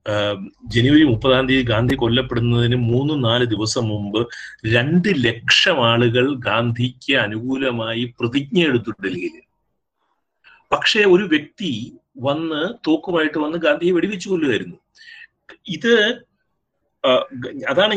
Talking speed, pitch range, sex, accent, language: 95 wpm, 125-200 Hz, male, native, Malayalam